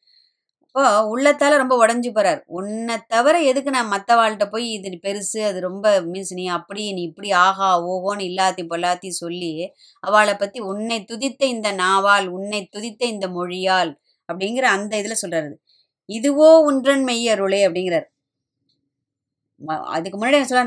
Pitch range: 180-235 Hz